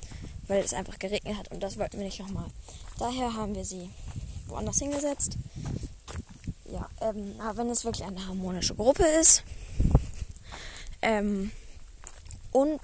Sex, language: female, German